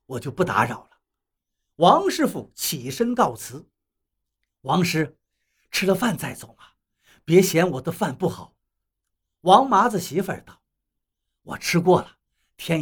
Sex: male